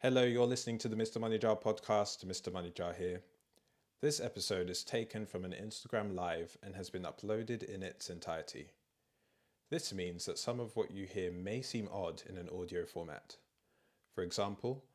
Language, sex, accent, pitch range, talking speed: English, male, British, 95-105 Hz, 175 wpm